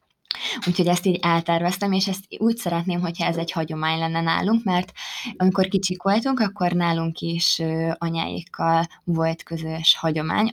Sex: female